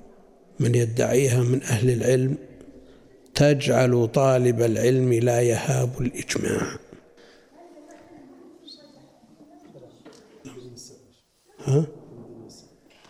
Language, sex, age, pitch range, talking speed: Arabic, male, 60-79, 120-140 Hz, 55 wpm